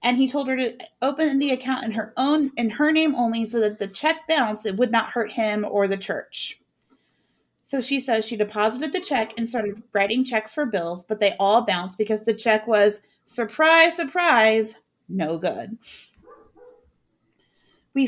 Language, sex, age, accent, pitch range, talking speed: English, female, 30-49, American, 205-245 Hz, 180 wpm